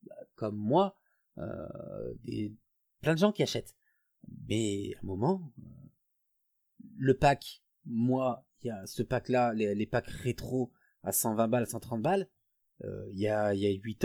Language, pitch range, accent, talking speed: French, 110-145 Hz, French, 160 wpm